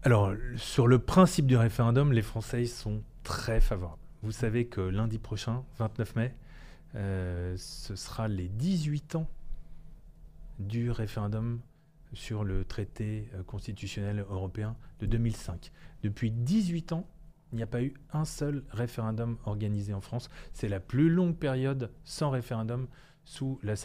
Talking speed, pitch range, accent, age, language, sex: 140 wpm, 100-140 Hz, French, 30-49, French, male